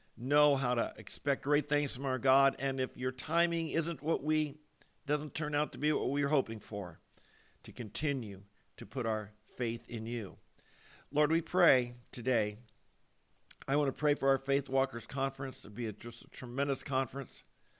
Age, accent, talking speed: 50-69, American, 180 wpm